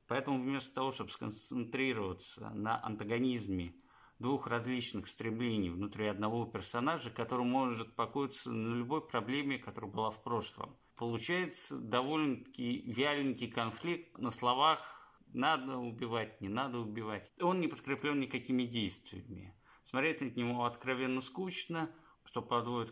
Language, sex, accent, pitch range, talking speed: Russian, male, native, 105-135 Hz, 120 wpm